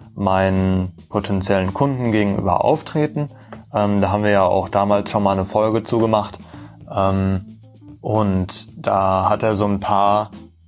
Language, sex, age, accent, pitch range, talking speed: German, male, 20-39, German, 95-115 Hz, 145 wpm